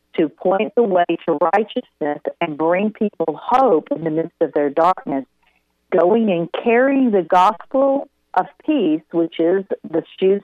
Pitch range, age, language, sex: 155-200 Hz, 50-69, English, female